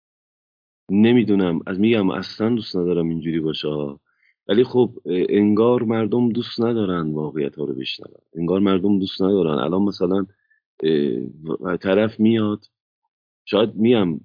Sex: male